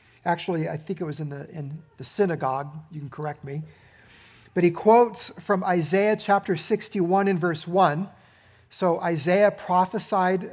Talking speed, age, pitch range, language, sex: 155 wpm, 50-69, 150-205 Hz, English, male